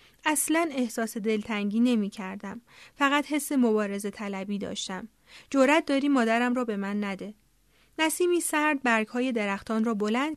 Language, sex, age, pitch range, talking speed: Persian, female, 30-49, 210-265 Hz, 135 wpm